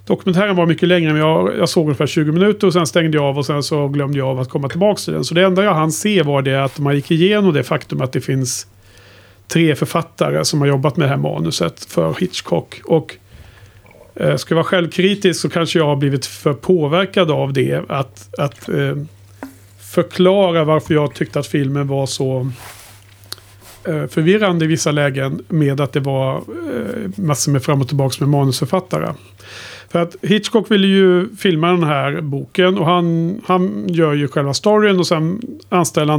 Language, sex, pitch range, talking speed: Swedish, male, 135-175 Hz, 185 wpm